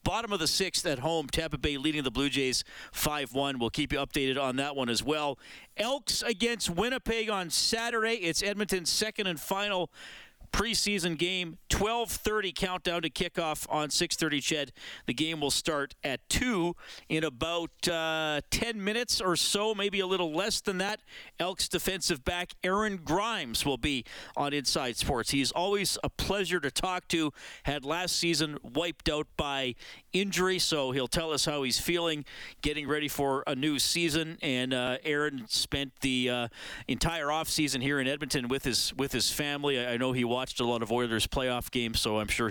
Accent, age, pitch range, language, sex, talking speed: American, 40-59, 130-175 Hz, English, male, 180 wpm